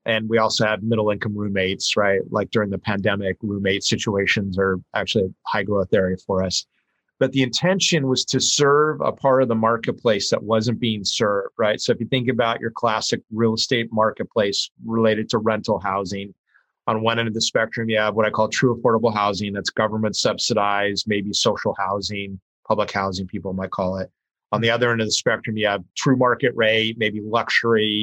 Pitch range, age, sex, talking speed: 105-120 Hz, 30-49, male, 195 wpm